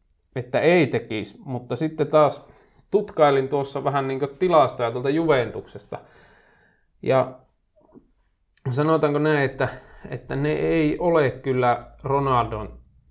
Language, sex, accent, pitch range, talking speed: Finnish, male, native, 120-140 Hz, 105 wpm